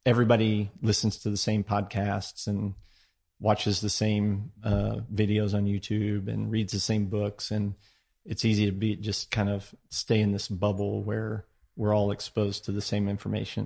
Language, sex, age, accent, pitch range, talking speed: English, male, 40-59, American, 100-110 Hz, 170 wpm